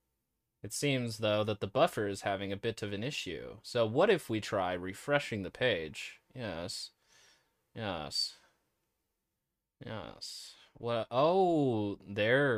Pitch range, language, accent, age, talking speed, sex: 100-125 Hz, English, American, 20-39, 135 wpm, male